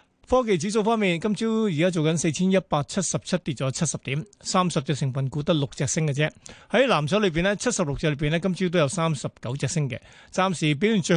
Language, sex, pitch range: Chinese, male, 145-185 Hz